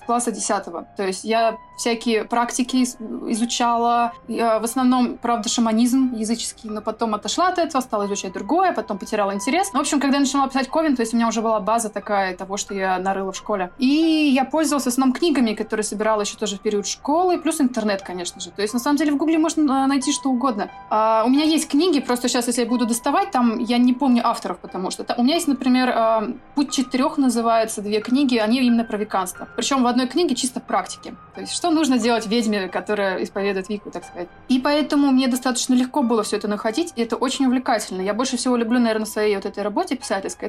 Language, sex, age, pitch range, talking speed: Russian, female, 20-39, 215-260 Hz, 215 wpm